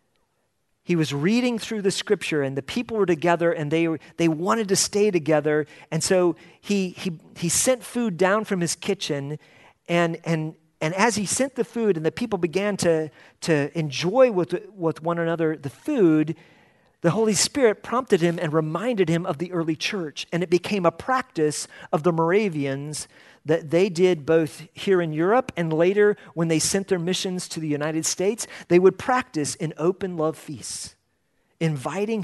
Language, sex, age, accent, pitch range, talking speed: English, male, 40-59, American, 150-195 Hz, 180 wpm